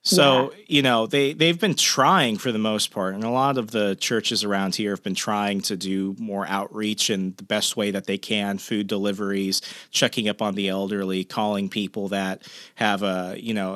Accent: American